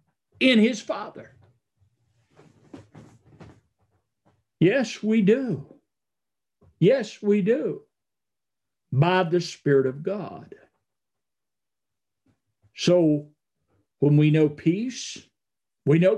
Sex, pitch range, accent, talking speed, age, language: male, 145-205 Hz, American, 80 wpm, 50-69, English